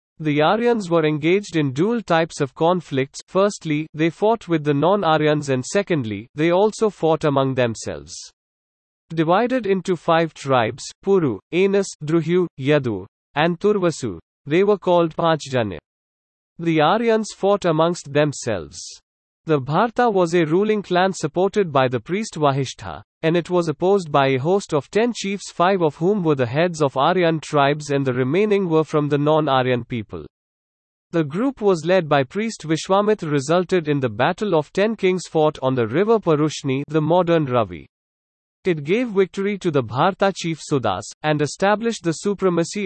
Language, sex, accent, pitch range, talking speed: English, male, Indian, 145-190 Hz, 160 wpm